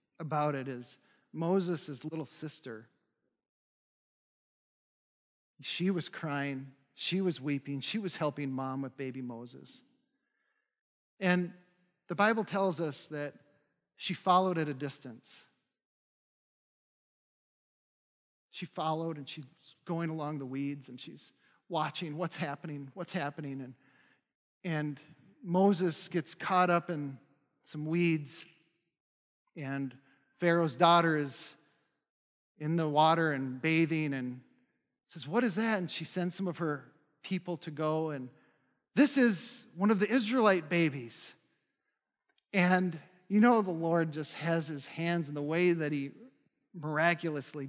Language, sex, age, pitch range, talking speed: English, male, 40-59, 145-185 Hz, 125 wpm